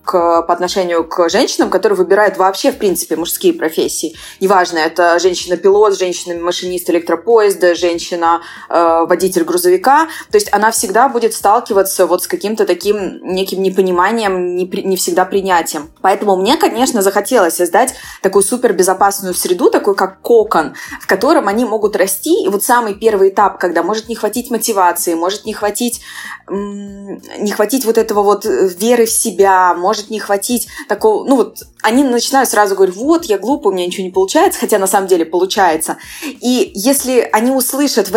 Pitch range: 180-235 Hz